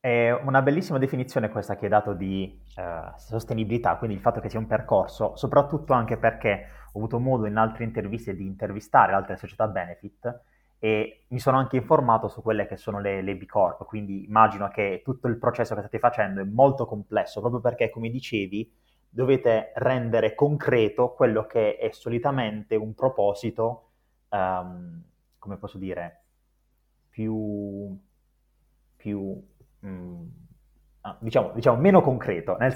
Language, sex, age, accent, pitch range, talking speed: Italian, male, 30-49, native, 105-130 Hz, 150 wpm